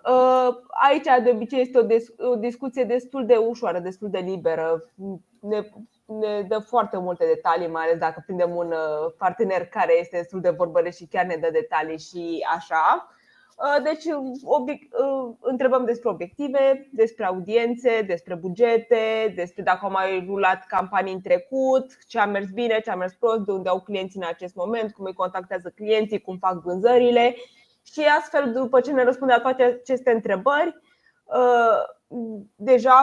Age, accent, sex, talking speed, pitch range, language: 20-39, native, female, 150 wpm, 185-255 Hz, Romanian